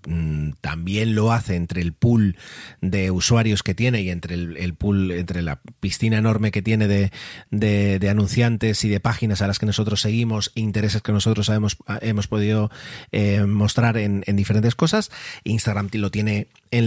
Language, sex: Spanish, male